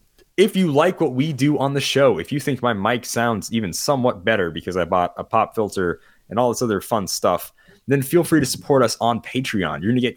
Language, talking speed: English, 250 wpm